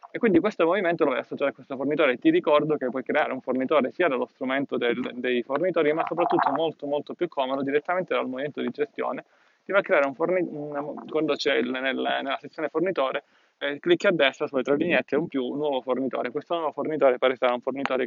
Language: Italian